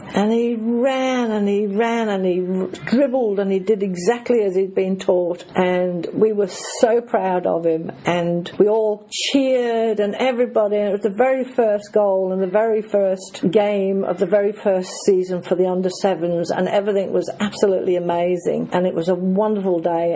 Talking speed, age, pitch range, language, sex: 180 wpm, 50-69, 180-215 Hz, English, female